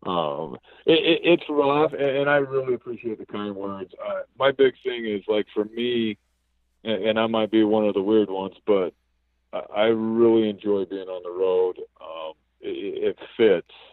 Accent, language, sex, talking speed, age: American, English, male, 175 wpm, 40-59